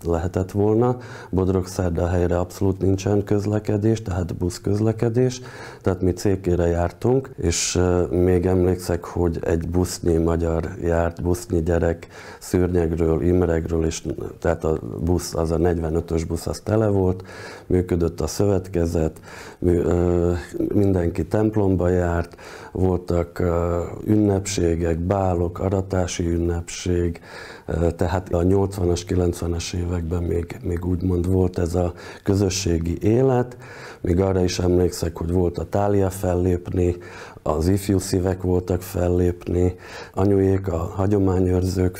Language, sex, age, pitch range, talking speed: Hungarian, male, 50-69, 85-95 Hz, 110 wpm